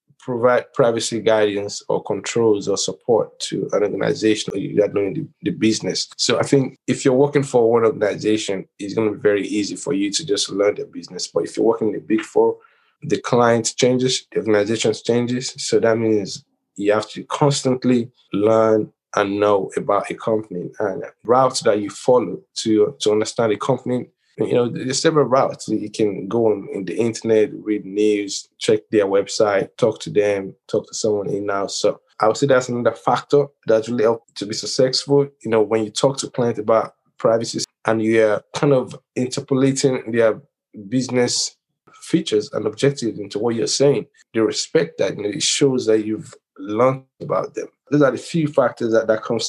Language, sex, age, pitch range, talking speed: English, male, 20-39, 110-135 Hz, 190 wpm